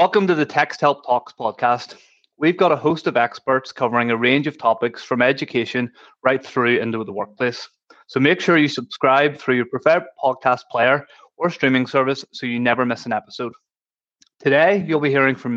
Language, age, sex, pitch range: English, 20-39, male, 120-150 Hz